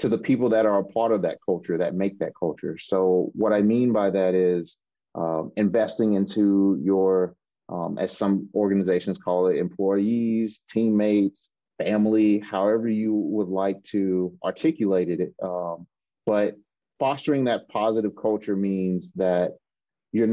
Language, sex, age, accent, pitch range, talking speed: English, male, 30-49, American, 95-110 Hz, 150 wpm